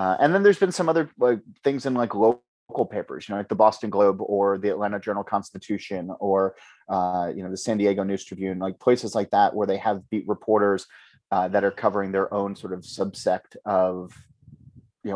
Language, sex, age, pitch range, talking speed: English, male, 30-49, 95-110 Hz, 210 wpm